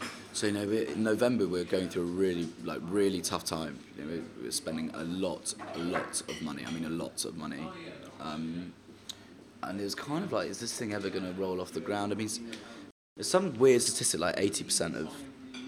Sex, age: male, 20-39